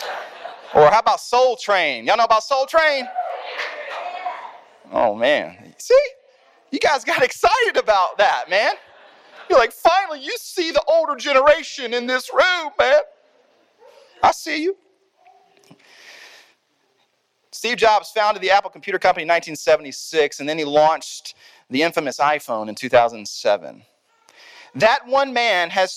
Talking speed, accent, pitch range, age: 130 wpm, American, 190-300 Hz, 30-49